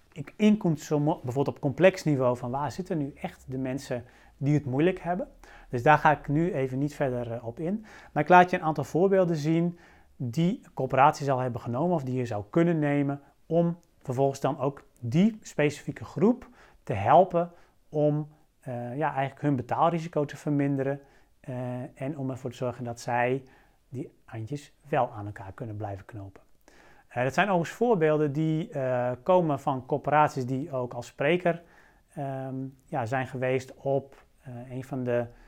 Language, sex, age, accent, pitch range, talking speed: Dutch, male, 40-59, Dutch, 130-160 Hz, 165 wpm